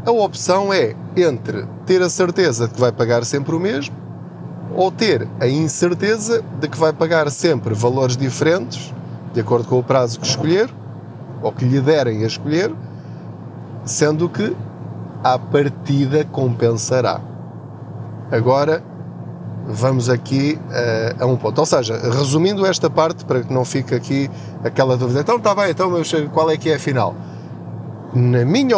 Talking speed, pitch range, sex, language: 155 wpm, 120-155 Hz, male, Portuguese